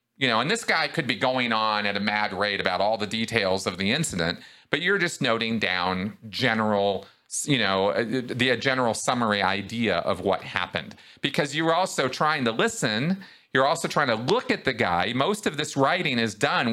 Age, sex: 40-59, male